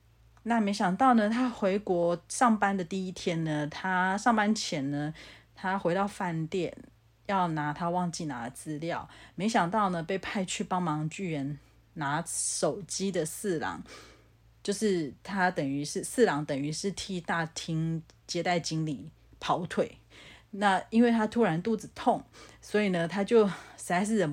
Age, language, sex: 30-49, Chinese, female